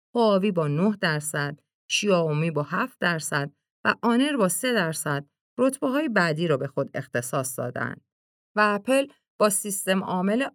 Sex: female